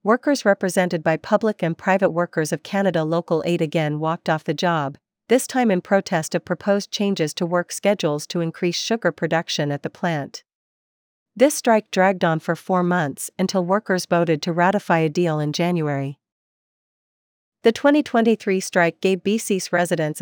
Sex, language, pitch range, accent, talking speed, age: female, English, 160-200 Hz, American, 165 wpm, 50-69